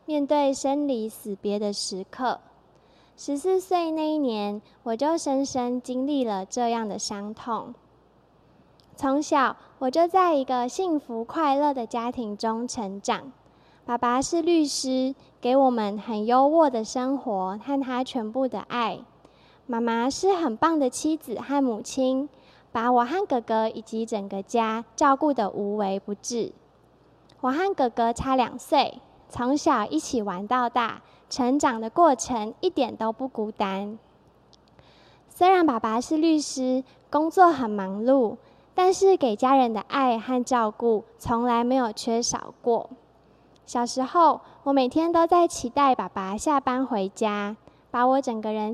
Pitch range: 225-280 Hz